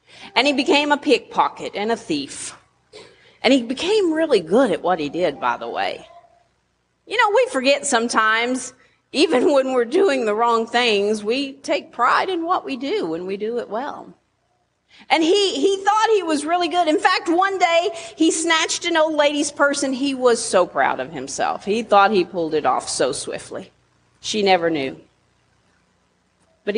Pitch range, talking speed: 185-295 Hz, 180 wpm